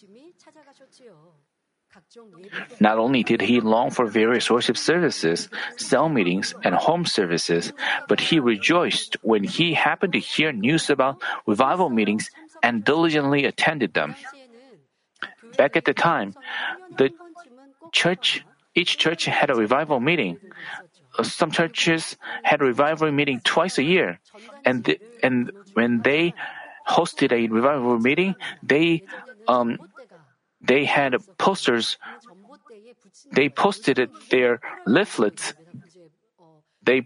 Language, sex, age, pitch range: Korean, male, 40-59, 140-215 Hz